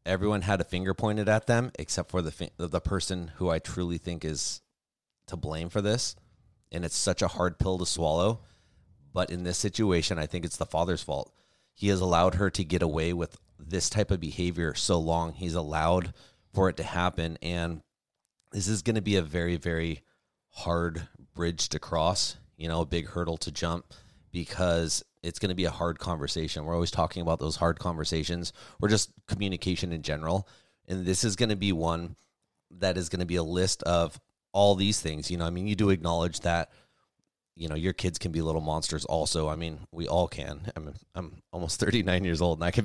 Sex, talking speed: male, 205 wpm